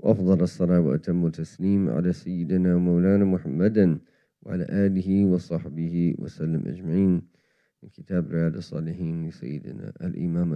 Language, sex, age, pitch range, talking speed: English, male, 40-59, 85-100 Hz, 100 wpm